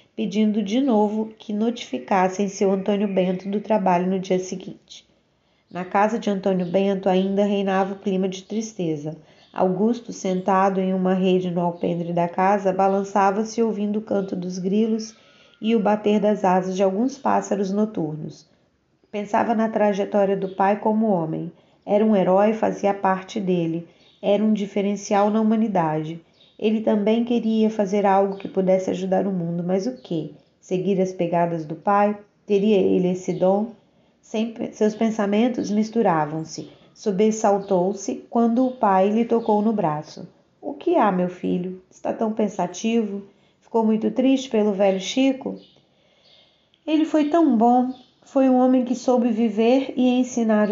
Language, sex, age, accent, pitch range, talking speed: Portuguese, female, 20-39, Brazilian, 185-220 Hz, 150 wpm